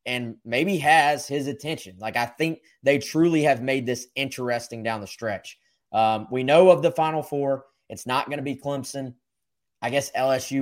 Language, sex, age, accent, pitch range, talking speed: English, male, 20-39, American, 110-140 Hz, 185 wpm